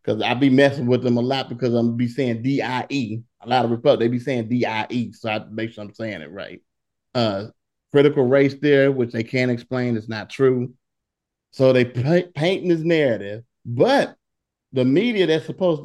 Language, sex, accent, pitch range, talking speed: English, male, American, 110-140 Hz, 210 wpm